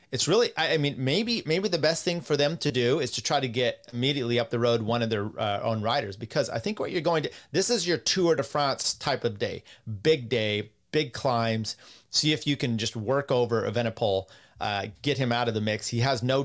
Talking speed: 245 wpm